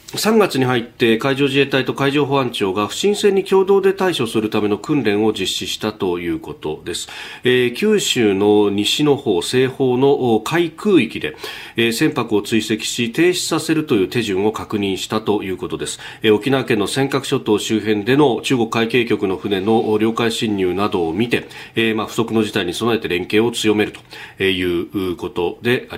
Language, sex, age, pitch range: Japanese, male, 40-59, 105-140 Hz